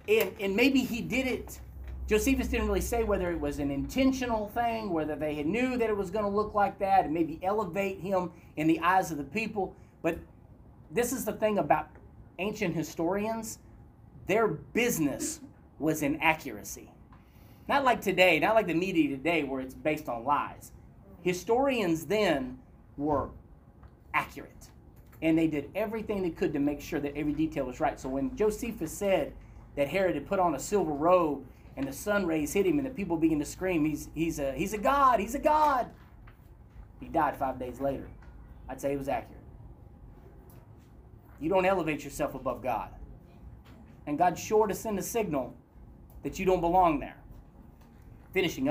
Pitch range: 145-215 Hz